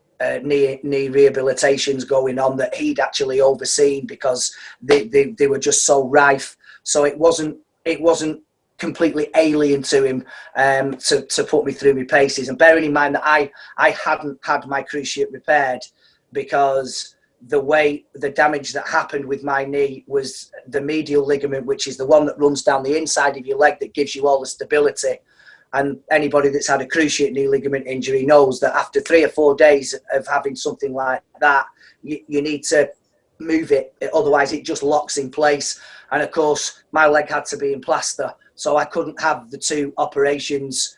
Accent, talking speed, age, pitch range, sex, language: British, 190 wpm, 30-49, 140-155 Hz, male, English